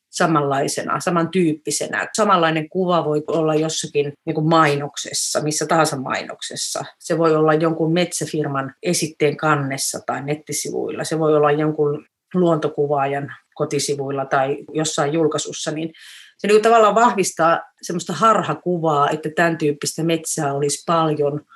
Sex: female